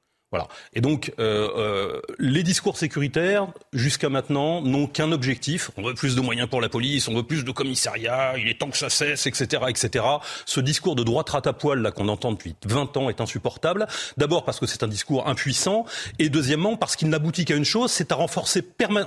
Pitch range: 135-185 Hz